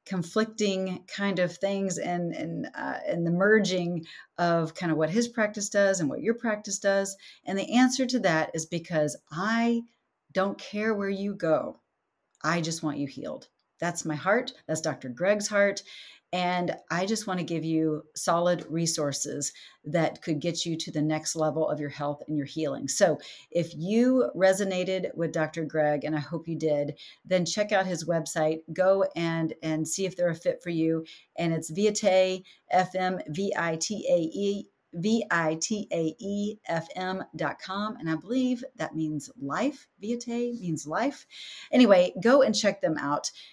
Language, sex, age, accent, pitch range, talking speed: English, female, 40-59, American, 160-200 Hz, 160 wpm